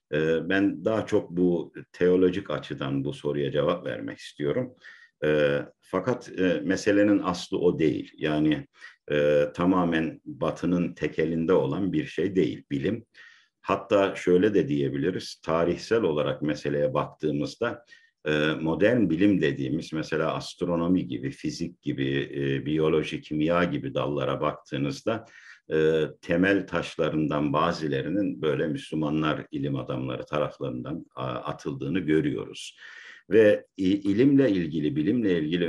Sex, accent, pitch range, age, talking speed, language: male, native, 75-100 Hz, 50-69, 110 wpm, Turkish